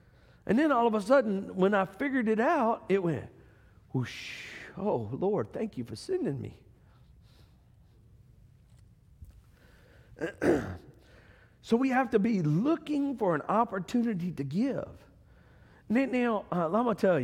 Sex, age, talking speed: male, 50-69, 130 wpm